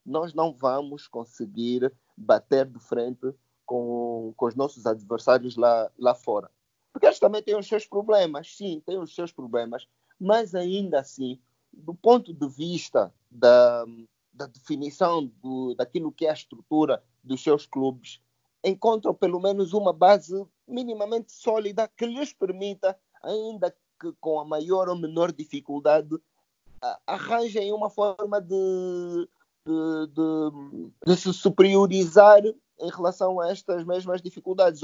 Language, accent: Portuguese, Brazilian